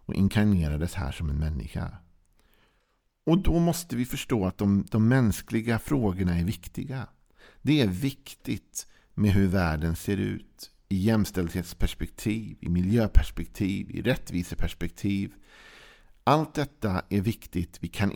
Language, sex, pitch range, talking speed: Swedish, male, 85-115 Hz, 120 wpm